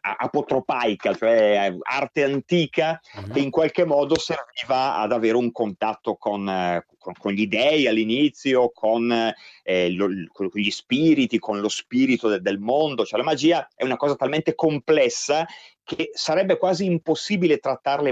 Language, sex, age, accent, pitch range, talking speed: Italian, male, 30-49, native, 115-175 Hz, 150 wpm